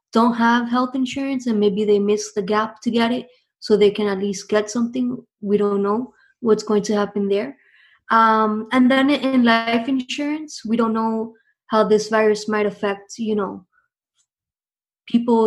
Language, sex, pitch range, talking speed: English, female, 205-235 Hz, 175 wpm